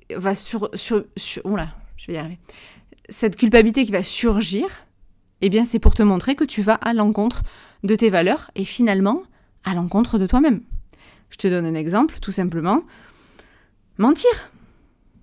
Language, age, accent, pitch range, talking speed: French, 20-39, French, 190-250 Hz, 165 wpm